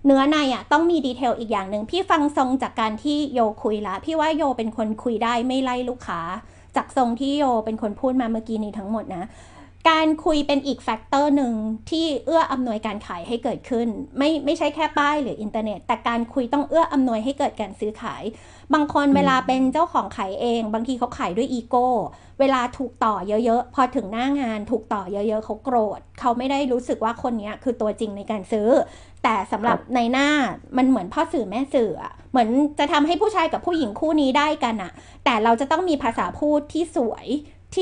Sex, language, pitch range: female, Thai, 230-295 Hz